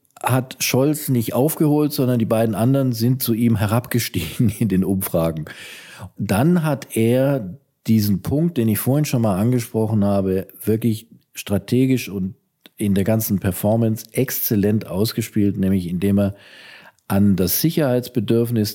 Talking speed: 135 wpm